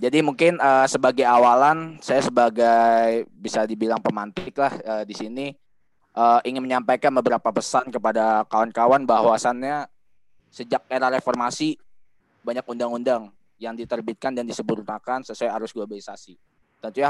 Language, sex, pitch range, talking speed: Indonesian, male, 110-130 Hz, 125 wpm